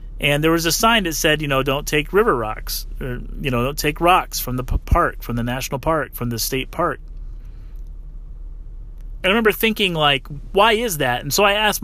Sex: male